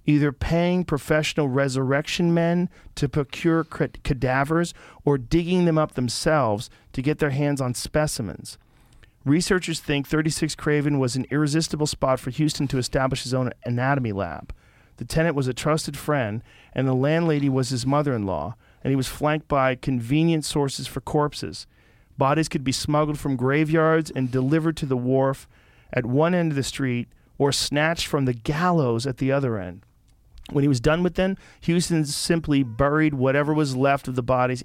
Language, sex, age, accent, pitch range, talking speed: English, male, 40-59, American, 125-150 Hz, 170 wpm